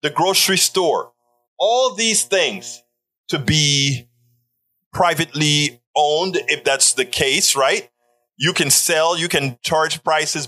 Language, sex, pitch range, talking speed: English, male, 130-185 Hz, 125 wpm